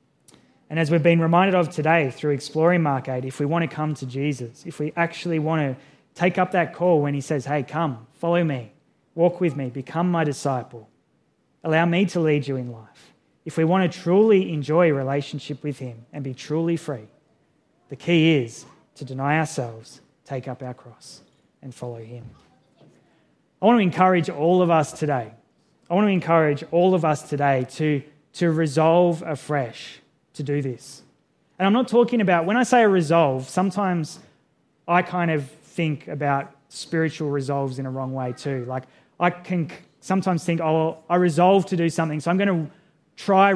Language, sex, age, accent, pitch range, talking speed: English, male, 20-39, Australian, 140-170 Hz, 185 wpm